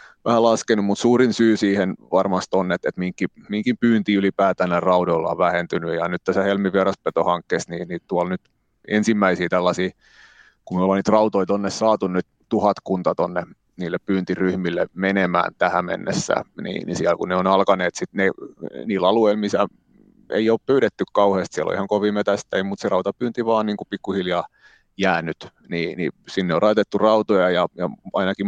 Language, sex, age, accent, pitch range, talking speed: Finnish, male, 30-49, native, 90-105 Hz, 165 wpm